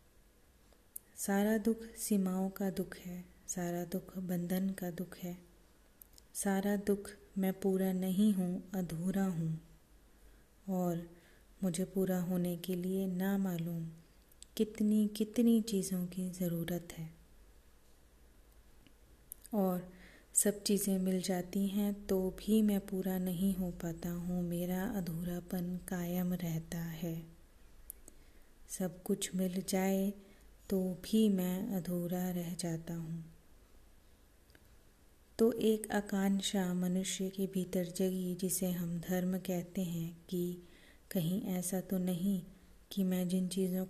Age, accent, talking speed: 30-49, native, 115 wpm